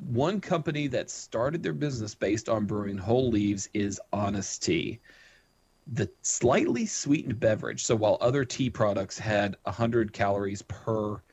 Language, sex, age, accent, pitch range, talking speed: English, male, 30-49, American, 100-125 Hz, 150 wpm